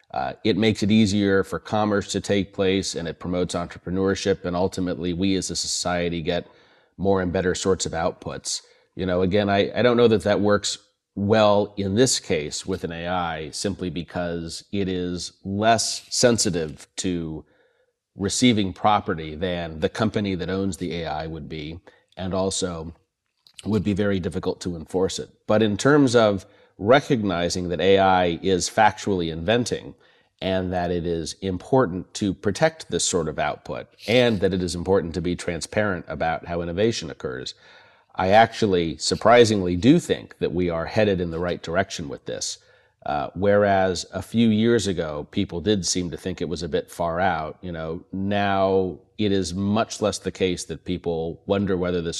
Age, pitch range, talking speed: 30-49, 90-100 Hz, 170 wpm